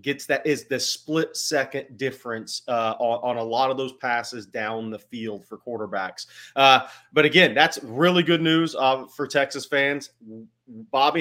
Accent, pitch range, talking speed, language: American, 120-150 Hz, 165 wpm, English